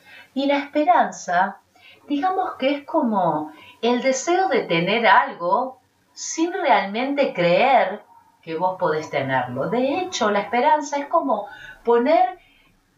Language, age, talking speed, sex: Spanish, 40-59, 120 wpm, female